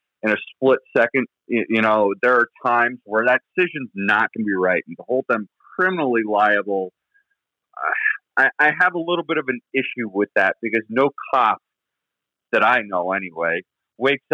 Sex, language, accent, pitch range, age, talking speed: male, English, American, 100-125 Hz, 30-49, 175 wpm